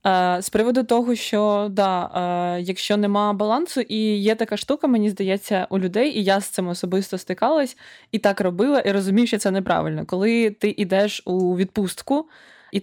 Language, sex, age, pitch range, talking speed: Ukrainian, female, 20-39, 195-235 Hz, 175 wpm